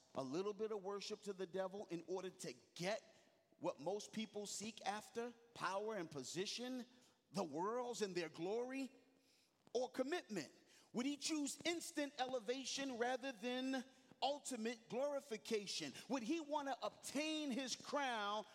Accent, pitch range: American, 210-260 Hz